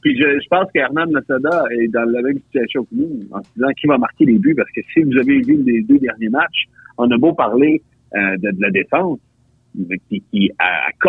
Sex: male